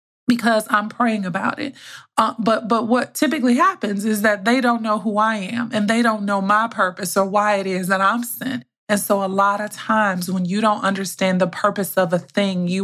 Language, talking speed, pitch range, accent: English, 225 wpm, 200-240 Hz, American